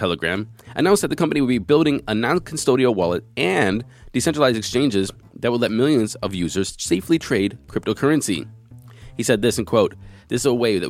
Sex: male